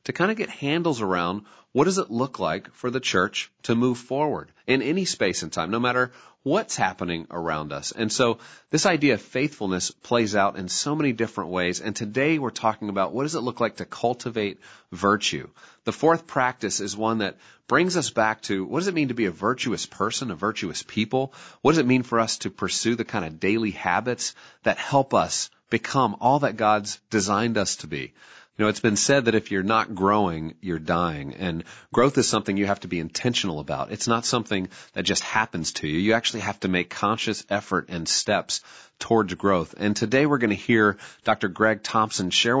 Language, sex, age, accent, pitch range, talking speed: English, male, 40-59, American, 95-125 Hz, 215 wpm